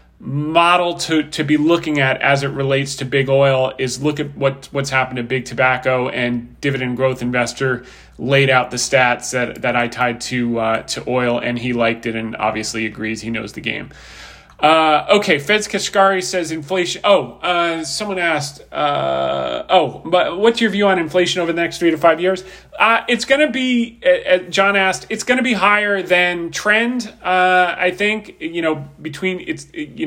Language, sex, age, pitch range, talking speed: English, male, 30-49, 140-180 Hz, 190 wpm